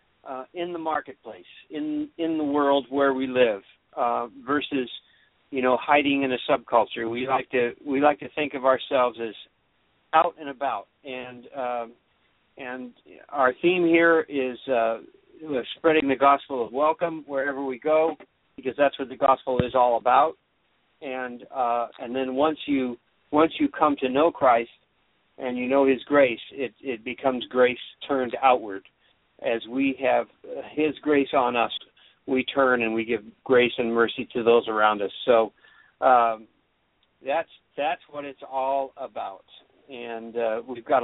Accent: American